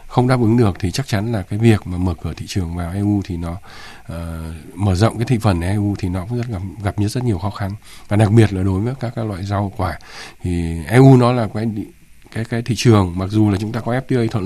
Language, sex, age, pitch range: Vietnamese, male, 20-39, 95-115 Hz